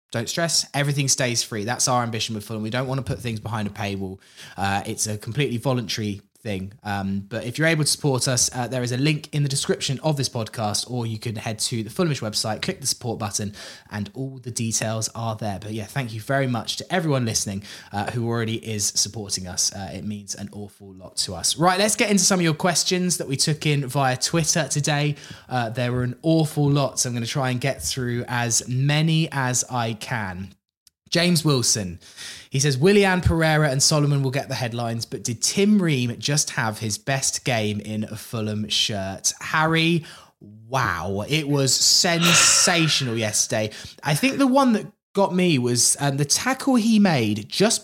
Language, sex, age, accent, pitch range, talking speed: English, male, 20-39, British, 110-160 Hz, 205 wpm